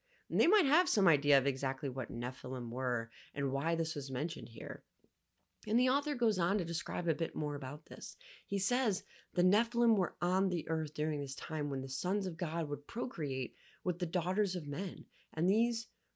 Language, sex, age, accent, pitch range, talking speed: English, female, 30-49, American, 160-235 Hz, 195 wpm